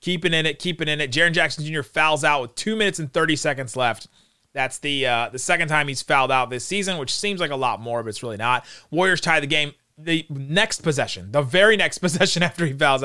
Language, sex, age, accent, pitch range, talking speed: English, male, 30-49, American, 130-175 Hz, 245 wpm